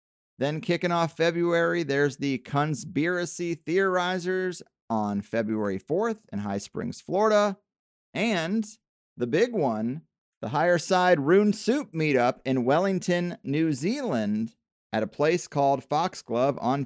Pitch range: 125-180 Hz